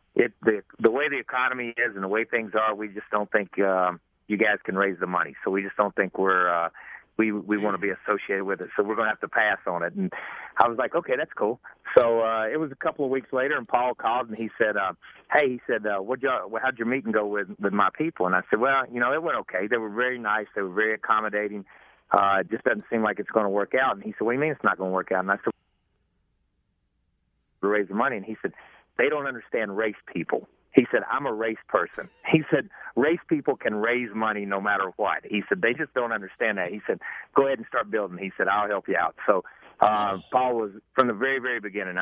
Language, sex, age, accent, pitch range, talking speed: English, male, 40-59, American, 100-115 Hz, 260 wpm